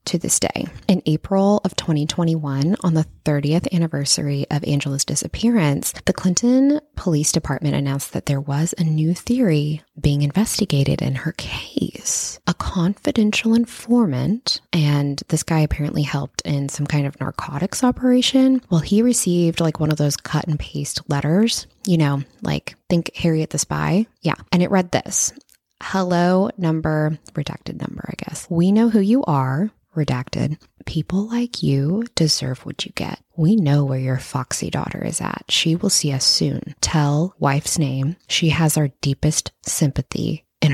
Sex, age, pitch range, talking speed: female, 20-39, 140-185 Hz, 160 wpm